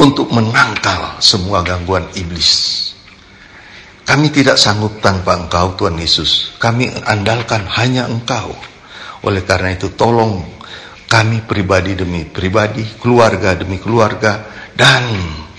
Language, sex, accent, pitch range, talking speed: Indonesian, male, native, 85-110 Hz, 110 wpm